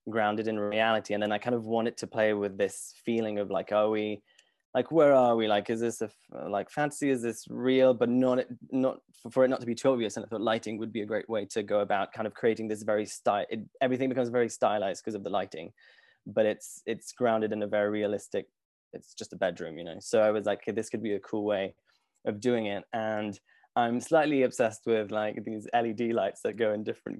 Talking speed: 240 wpm